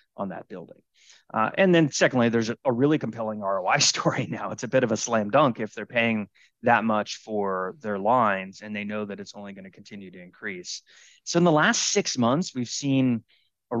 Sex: male